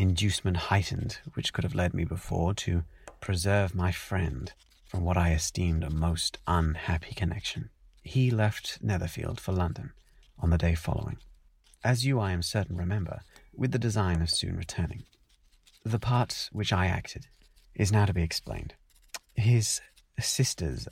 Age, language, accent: 30-49, English, British